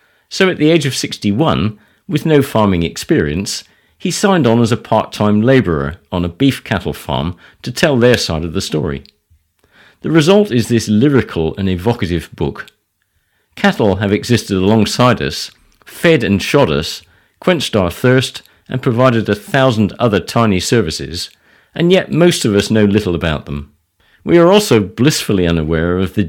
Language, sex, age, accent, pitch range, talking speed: English, male, 50-69, British, 85-115 Hz, 165 wpm